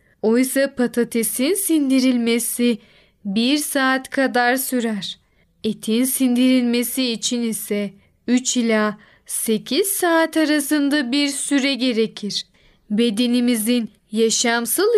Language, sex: Turkish, female